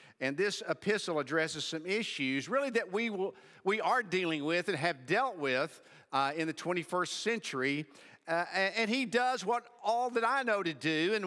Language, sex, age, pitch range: English, male, 50-69, 140-190 Hz